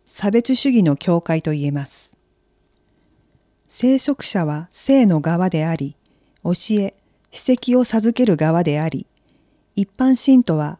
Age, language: 40-59, Japanese